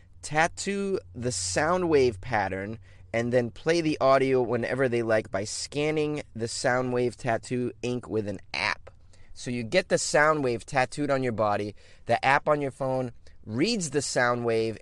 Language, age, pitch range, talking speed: English, 30-49, 110-140 Hz, 170 wpm